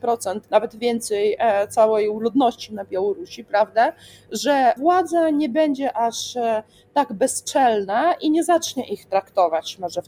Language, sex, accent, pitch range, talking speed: Polish, female, native, 215-285 Hz, 125 wpm